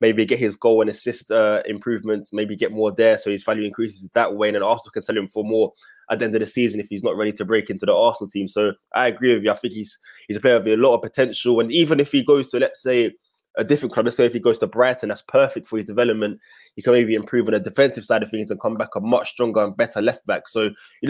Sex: male